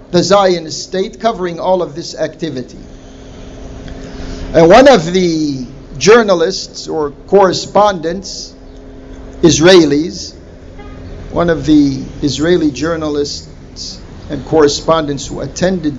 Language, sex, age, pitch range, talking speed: English, male, 50-69, 140-205 Hz, 95 wpm